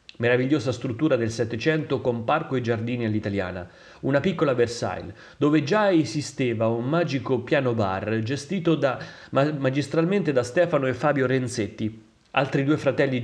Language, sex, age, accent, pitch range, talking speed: Italian, male, 30-49, native, 115-155 Hz, 130 wpm